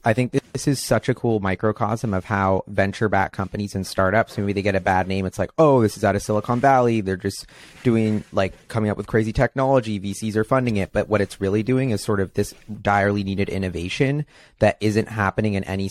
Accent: American